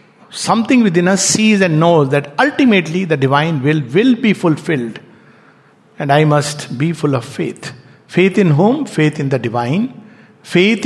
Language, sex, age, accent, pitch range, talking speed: English, male, 60-79, Indian, 140-185 Hz, 160 wpm